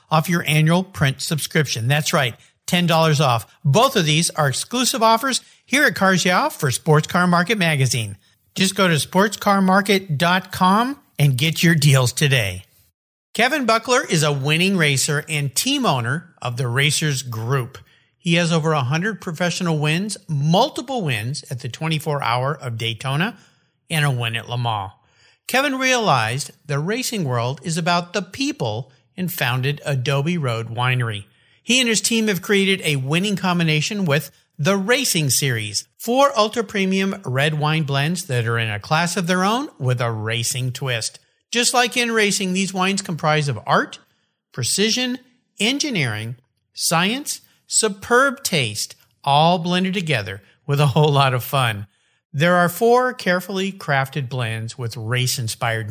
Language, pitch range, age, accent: English, 130-195 Hz, 50-69, American